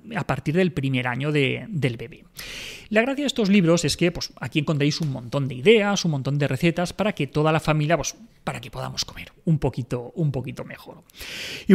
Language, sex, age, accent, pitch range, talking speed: Spanish, male, 30-49, Spanish, 135-185 Hz, 215 wpm